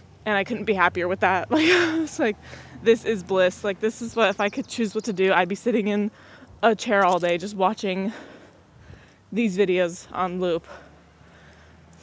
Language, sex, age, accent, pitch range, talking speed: English, female, 20-39, American, 195-240 Hz, 195 wpm